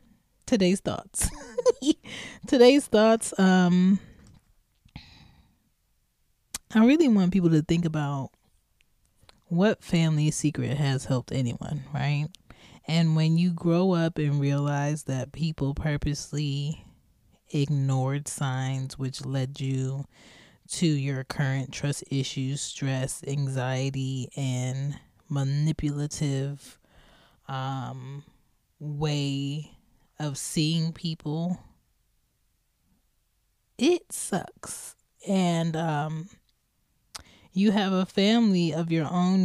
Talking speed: 90 wpm